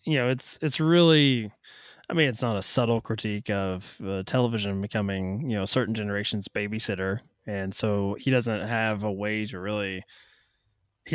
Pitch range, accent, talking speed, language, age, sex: 100-125 Hz, American, 165 wpm, English, 20-39, male